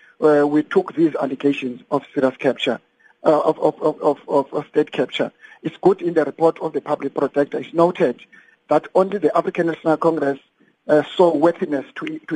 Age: 50-69